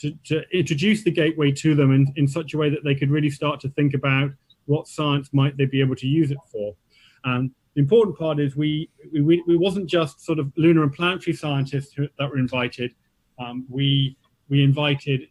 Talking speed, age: 210 wpm, 30-49